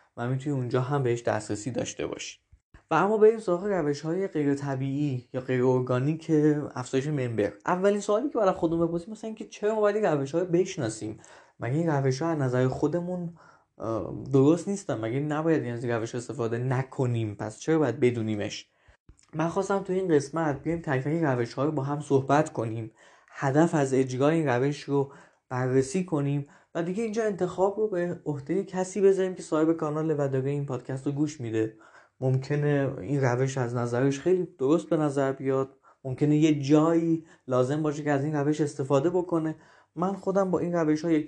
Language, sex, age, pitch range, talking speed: Persian, male, 20-39, 130-165 Hz, 175 wpm